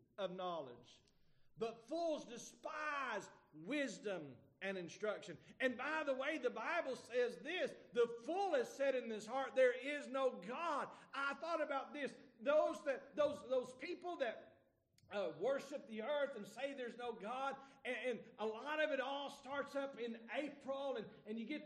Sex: male